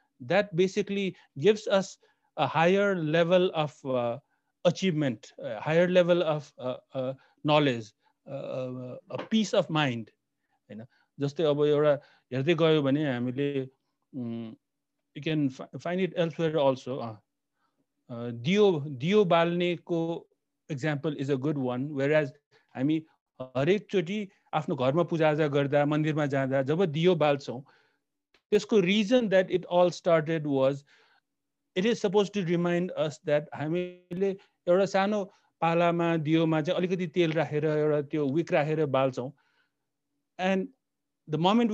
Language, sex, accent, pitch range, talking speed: Kannada, male, native, 145-185 Hz, 135 wpm